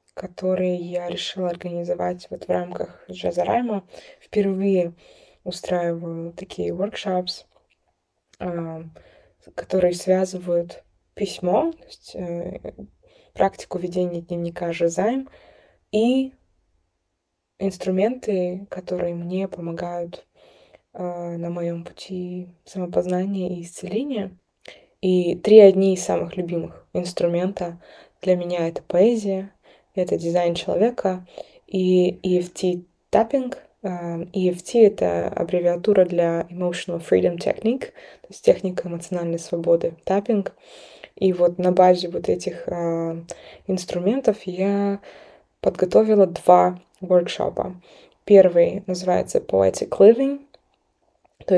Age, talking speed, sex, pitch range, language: 20-39, 95 wpm, female, 170-195 Hz, Russian